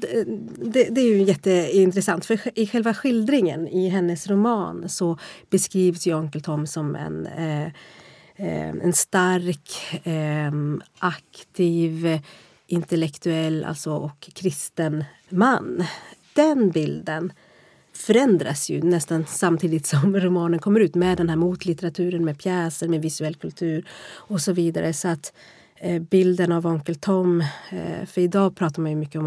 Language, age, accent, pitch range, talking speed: Swedish, 30-49, native, 160-190 Hz, 125 wpm